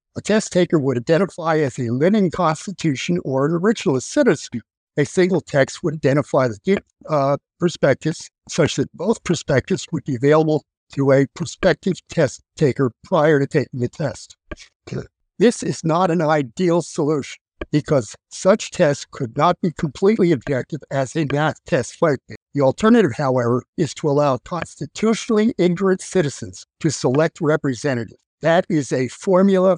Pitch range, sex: 135-175 Hz, male